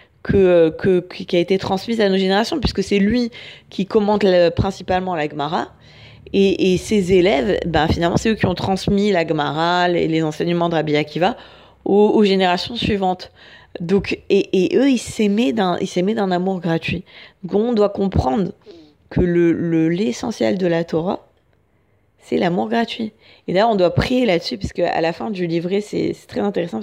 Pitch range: 170-205 Hz